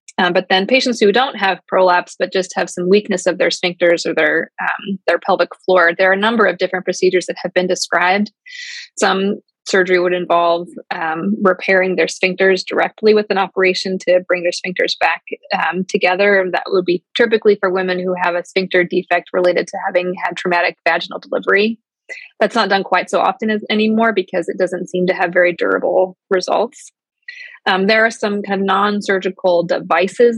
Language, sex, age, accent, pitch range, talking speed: English, female, 20-39, American, 180-215 Hz, 190 wpm